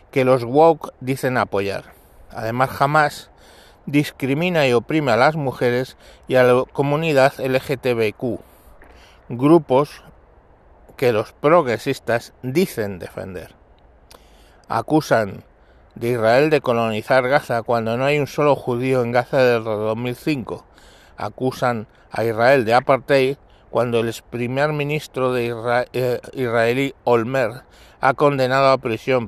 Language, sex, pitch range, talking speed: Spanish, male, 115-140 Hz, 120 wpm